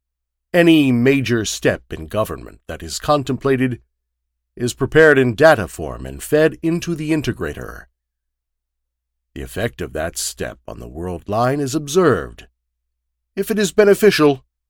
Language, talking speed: English, 135 wpm